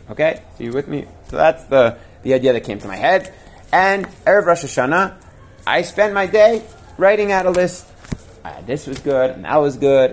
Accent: American